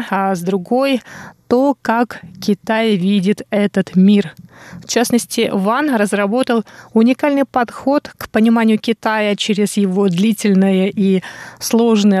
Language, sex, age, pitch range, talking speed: Russian, female, 20-39, 195-235 Hz, 115 wpm